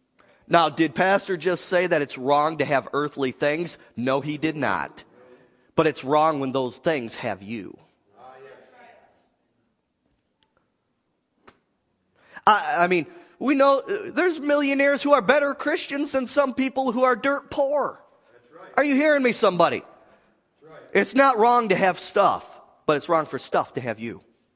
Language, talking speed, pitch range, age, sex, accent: English, 150 wpm, 160-260 Hz, 30-49, male, American